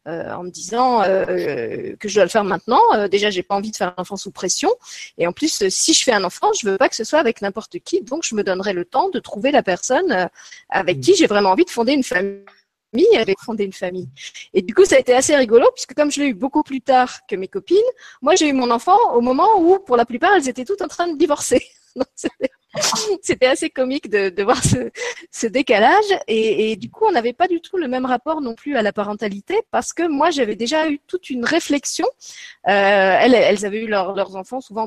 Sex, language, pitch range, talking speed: female, French, 205-335 Hz, 250 wpm